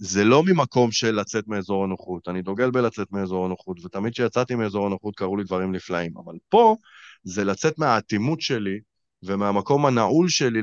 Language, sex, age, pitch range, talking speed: Hebrew, male, 30-49, 95-125 Hz, 165 wpm